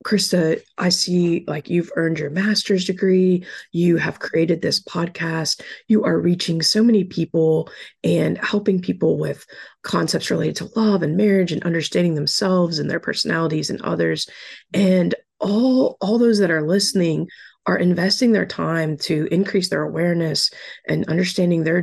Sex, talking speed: female, 155 wpm